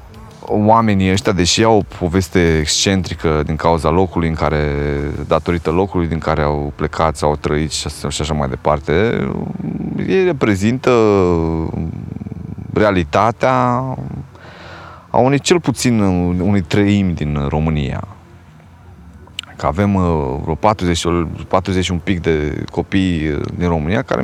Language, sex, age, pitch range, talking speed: Romanian, male, 30-49, 80-105 Hz, 120 wpm